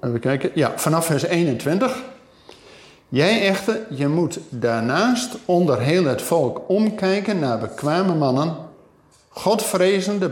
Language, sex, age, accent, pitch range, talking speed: Dutch, male, 50-69, Dutch, 125-185 Hz, 115 wpm